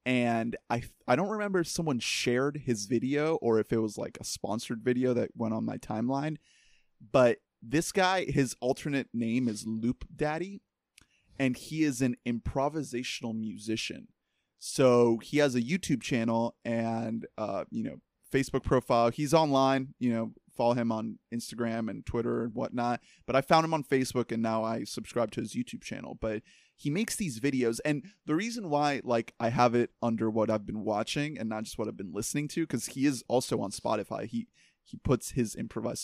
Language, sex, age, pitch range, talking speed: English, male, 20-39, 115-145 Hz, 190 wpm